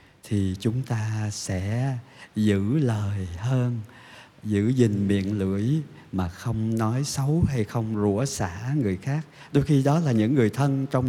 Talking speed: 155 wpm